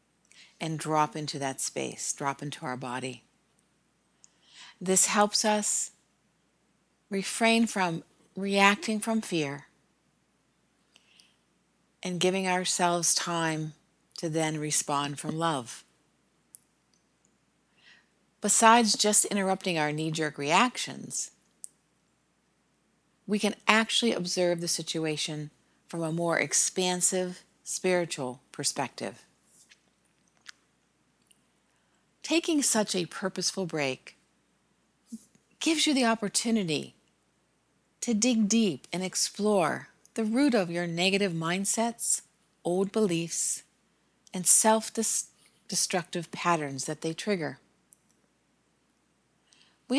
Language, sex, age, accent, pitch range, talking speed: English, female, 50-69, American, 160-210 Hz, 90 wpm